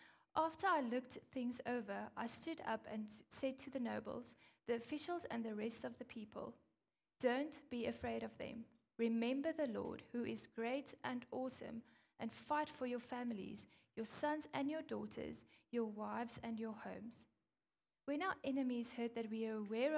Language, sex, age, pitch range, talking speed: English, female, 10-29, 225-290 Hz, 170 wpm